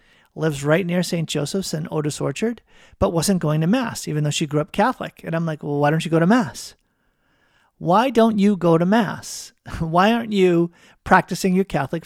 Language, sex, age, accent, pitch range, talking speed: English, male, 40-59, American, 160-205 Hz, 205 wpm